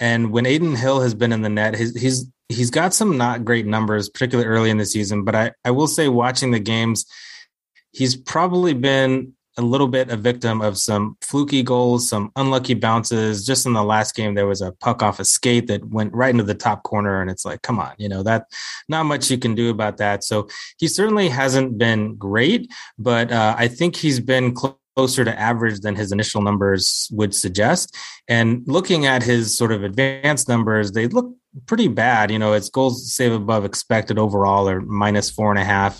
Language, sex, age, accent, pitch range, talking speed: English, male, 30-49, American, 105-130 Hz, 210 wpm